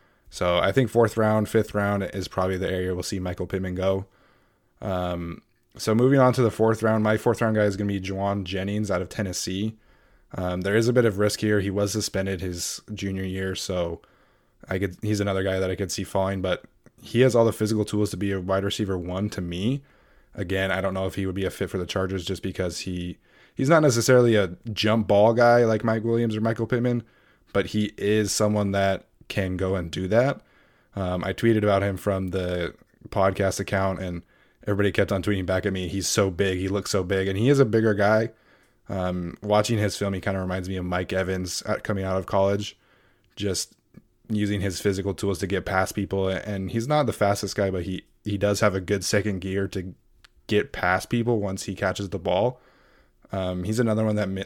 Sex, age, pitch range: male, 20-39, 95-105 Hz